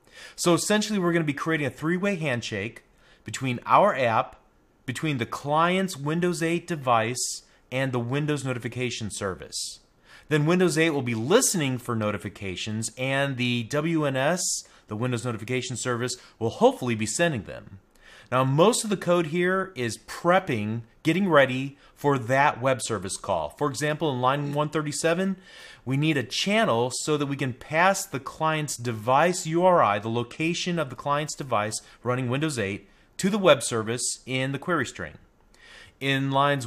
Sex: male